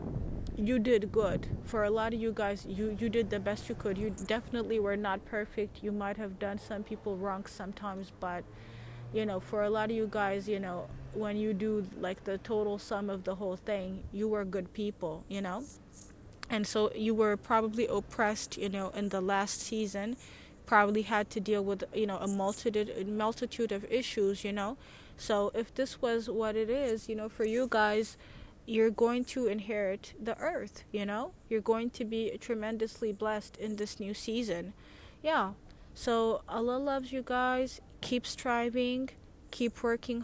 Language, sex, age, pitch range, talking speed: English, female, 20-39, 205-230 Hz, 185 wpm